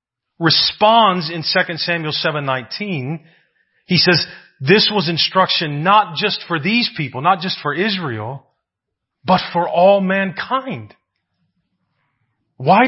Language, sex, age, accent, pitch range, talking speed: English, male, 40-59, American, 155-205 Hz, 110 wpm